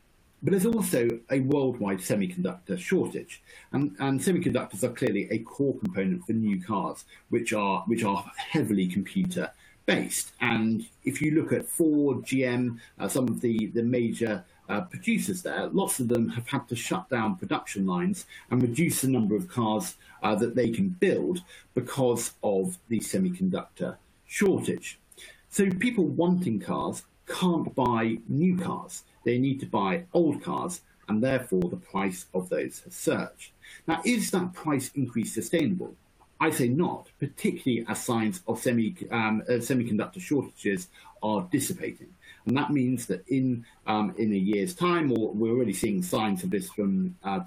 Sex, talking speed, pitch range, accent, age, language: male, 160 wpm, 105-175 Hz, British, 50-69, English